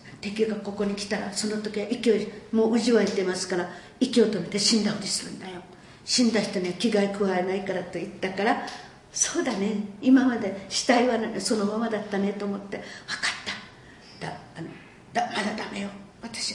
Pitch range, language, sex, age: 185-225 Hz, Japanese, female, 50-69